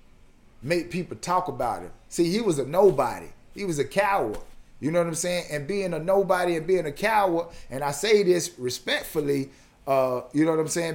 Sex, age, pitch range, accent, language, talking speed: male, 30-49, 140-175 Hz, American, English, 210 wpm